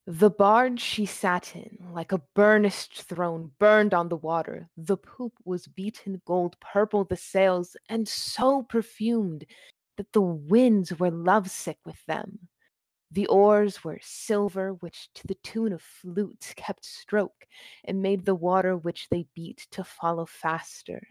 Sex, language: female, English